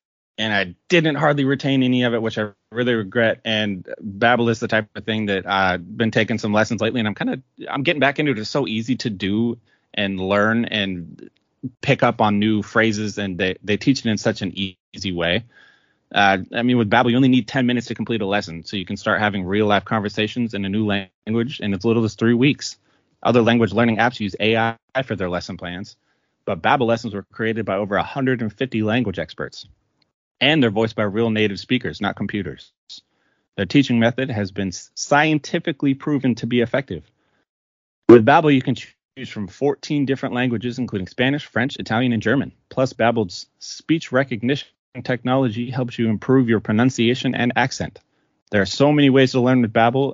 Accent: American